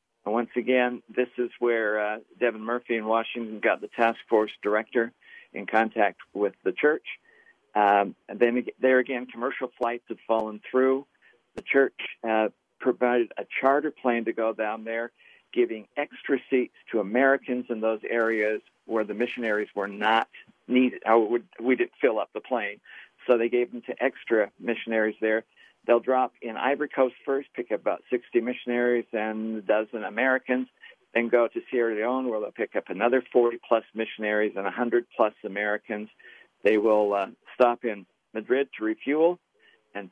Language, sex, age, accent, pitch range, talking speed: English, male, 50-69, American, 110-125 Hz, 165 wpm